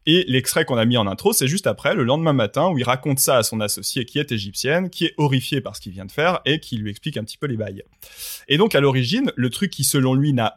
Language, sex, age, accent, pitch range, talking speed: French, male, 20-39, French, 120-160 Hz, 290 wpm